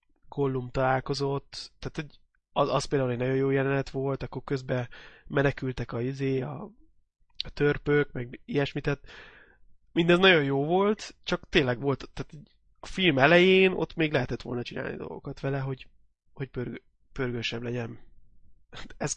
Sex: male